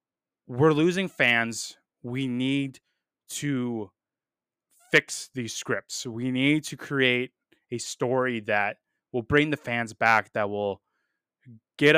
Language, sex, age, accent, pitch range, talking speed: English, male, 20-39, American, 110-140 Hz, 120 wpm